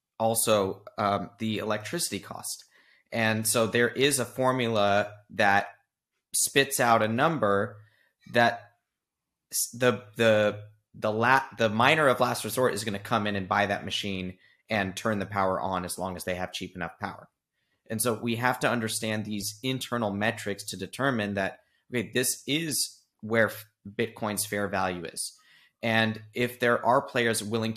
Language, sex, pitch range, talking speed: English, male, 100-115 Hz, 160 wpm